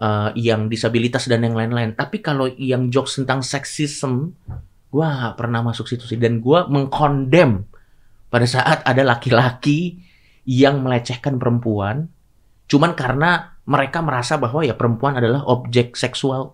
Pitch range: 120-175 Hz